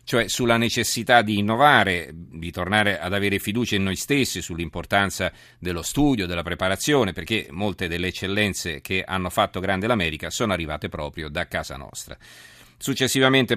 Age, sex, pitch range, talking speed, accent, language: 40-59, male, 90-110 Hz, 150 wpm, native, Italian